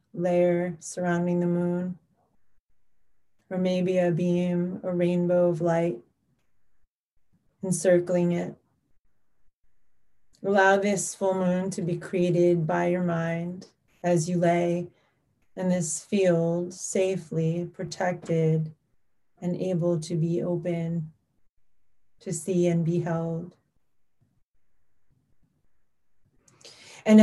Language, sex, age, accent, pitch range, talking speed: English, female, 30-49, American, 170-190 Hz, 95 wpm